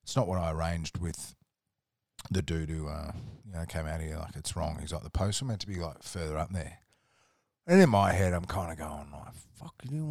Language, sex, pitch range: English, male, 85-105 Hz